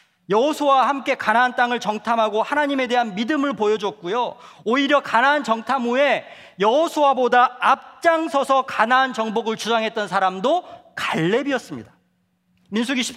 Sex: male